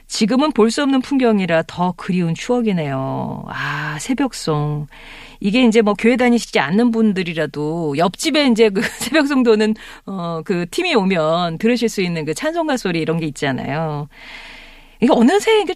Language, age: Korean, 40-59